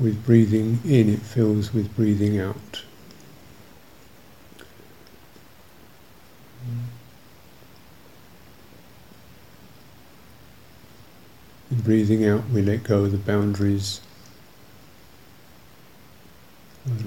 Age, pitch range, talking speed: 50-69, 100-115 Hz, 65 wpm